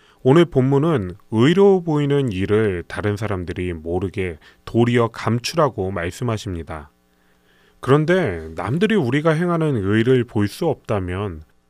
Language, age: Korean, 30-49